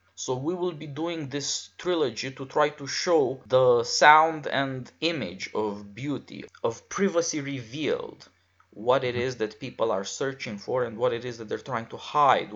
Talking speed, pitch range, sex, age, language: 175 wpm, 125-170 Hz, male, 20-39, English